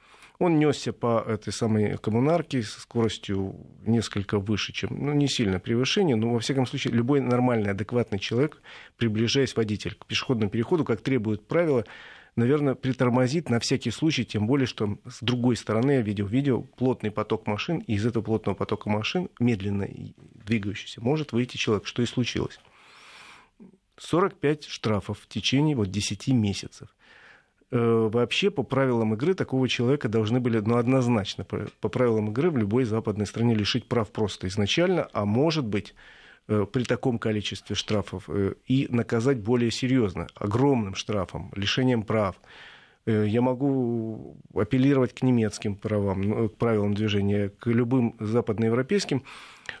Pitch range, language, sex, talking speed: 105-130 Hz, Russian, male, 140 wpm